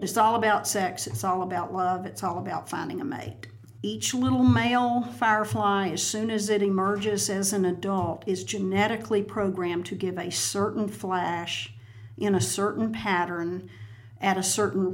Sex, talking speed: female, 165 wpm